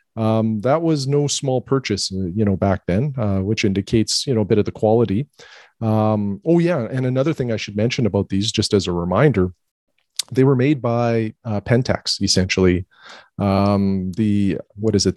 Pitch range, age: 100-120 Hz, 40-59